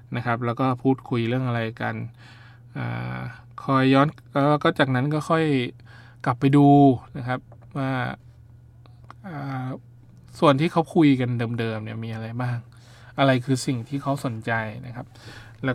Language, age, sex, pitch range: Thai, 20-39, male, 115-135 Hz